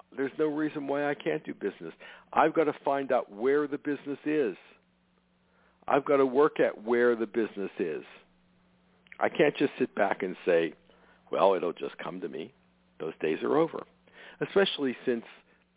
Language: English